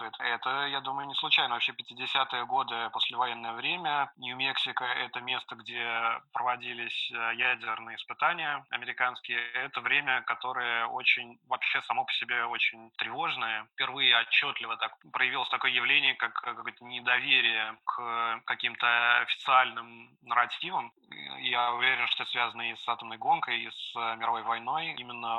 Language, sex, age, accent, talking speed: Russian, male, 20-39, native, 130 wpm